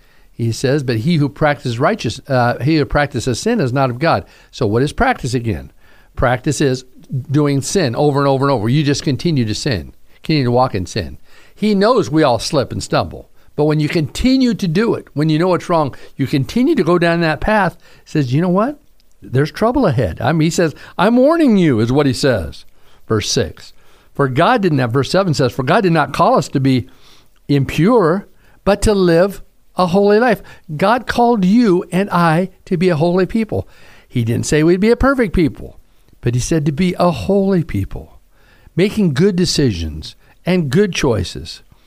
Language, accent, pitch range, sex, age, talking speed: English, American, 120-175 Hz, male, 60-79, 200 wpm